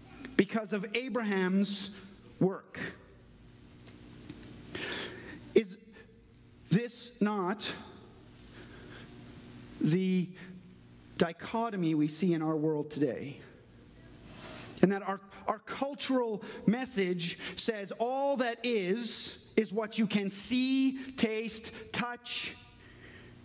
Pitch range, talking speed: 180-245 Hz, 80 wpm